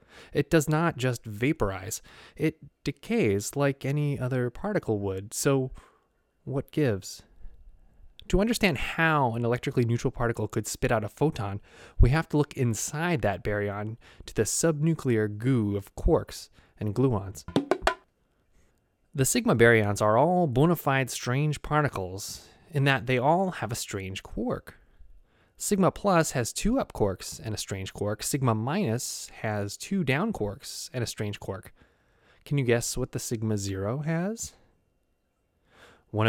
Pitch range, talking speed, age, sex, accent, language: 105-155 Hz, 145 wpm, 20-39, male, American, English